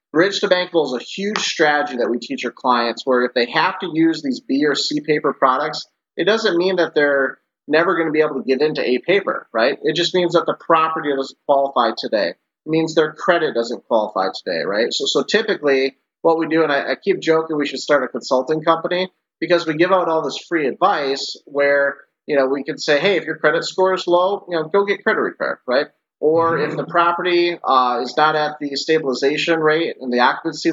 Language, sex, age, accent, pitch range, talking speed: English, male, 30-49, American, 135-170 Hz, 225 wpm